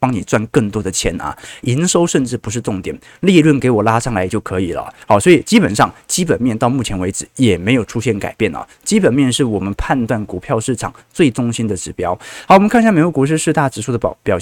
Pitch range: 110-155 Hz